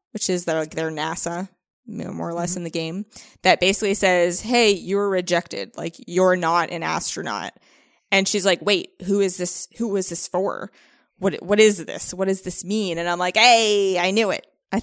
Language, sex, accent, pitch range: English, female, American, 170-205 Hz